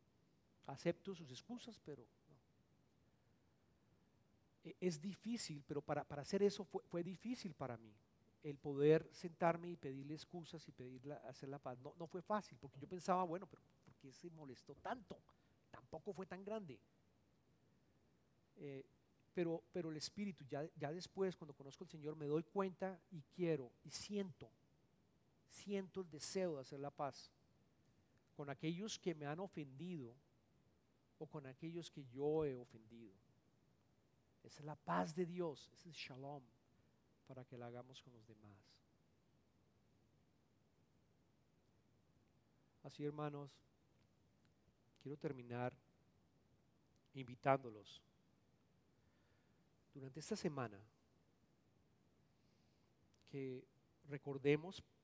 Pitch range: 130-170 Hz